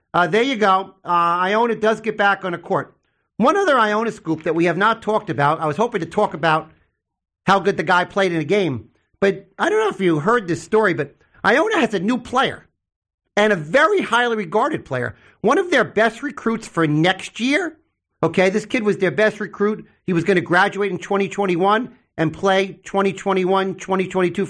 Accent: American